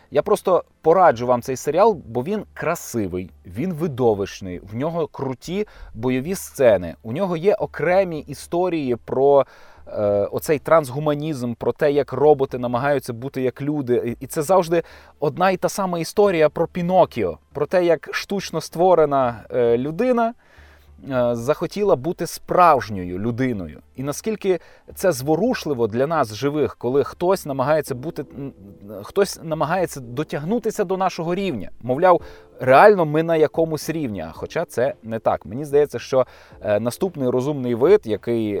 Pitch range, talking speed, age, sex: 120-170 Hz, 135 wpm, 20-39, male